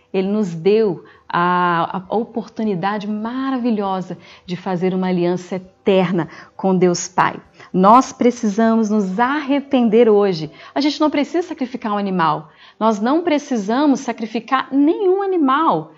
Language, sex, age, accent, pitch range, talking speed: Portuguese, female, 40-59, Brazilian, 185-240 Hz, 120 wpm